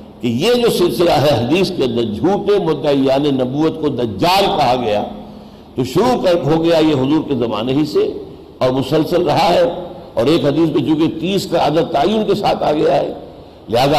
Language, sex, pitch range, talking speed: Urdu, male, 145-205 Hz, 190 wpm